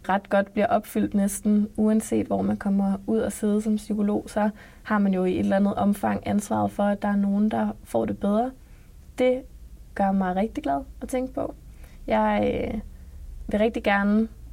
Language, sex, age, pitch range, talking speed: Danish, female, 20-39, 175-215 Hz, 185 wpm